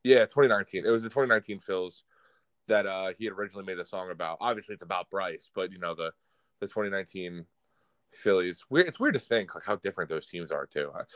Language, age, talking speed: English, 20-39, 205 wpm